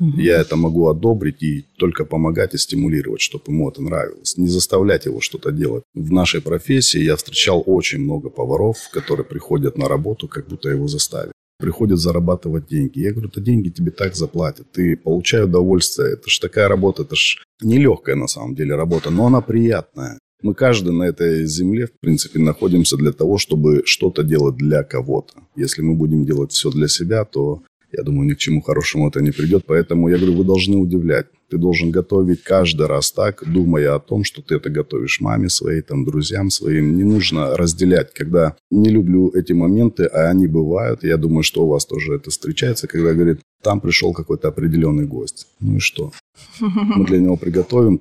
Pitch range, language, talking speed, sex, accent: 80-100 Hz, Russian, 185 wpm, male, native